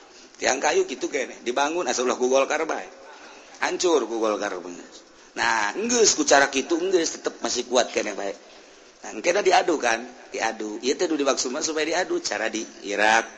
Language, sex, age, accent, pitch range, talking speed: Indonesian, male, 40-59, native, 110-165 Hz, 140 wpm